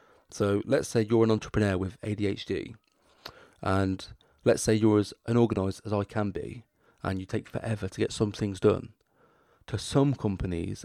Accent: British